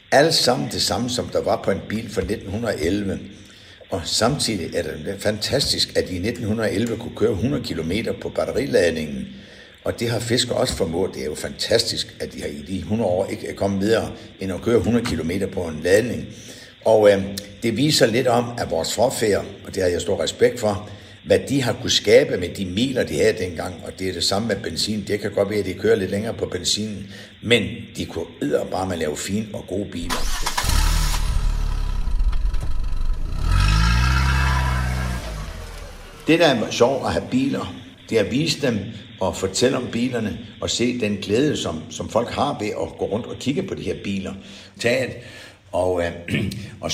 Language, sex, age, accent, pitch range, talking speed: Danish, male, 60-79, native, 85-115 Hz, 190 wpm